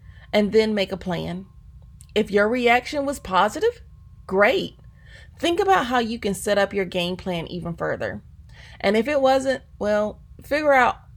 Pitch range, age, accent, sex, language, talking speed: 175-225 Hz, 30-49, American, female, English, 160 wpm